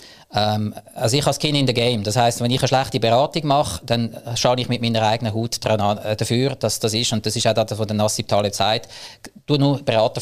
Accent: Austrian